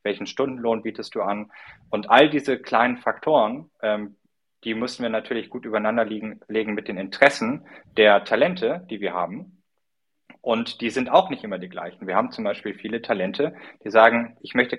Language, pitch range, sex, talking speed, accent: German, 105-125 Hz, male, 185 wpm, German